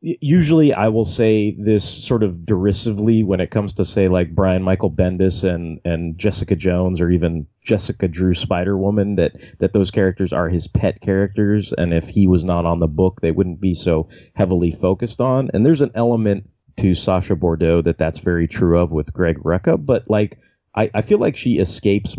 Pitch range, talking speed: 85-110 Hz, 195 wpm